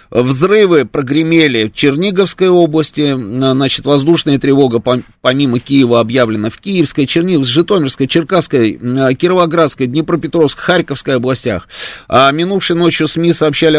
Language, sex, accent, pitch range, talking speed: Russian, male, native, 120-160 Hz, 110 wpm